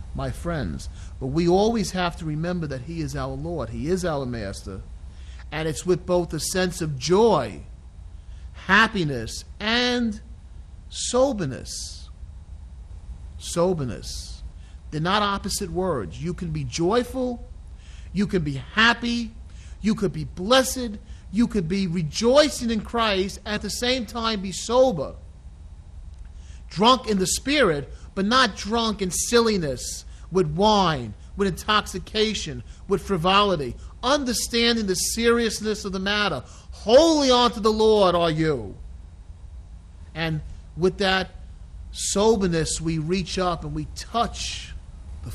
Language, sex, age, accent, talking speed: English, male, 40-59, American, 125 wpm